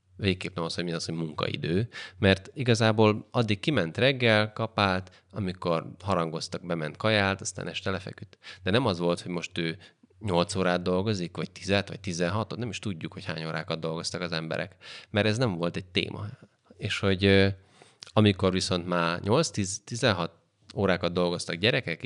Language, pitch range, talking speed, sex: Hungarian, 85-105 Hz, 165 wpm, male